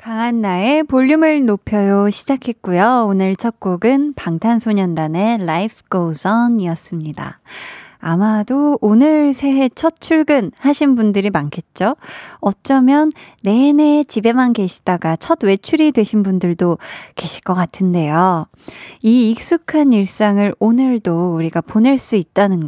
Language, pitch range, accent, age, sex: Korean, 185-260 Hz, native, 20-39, female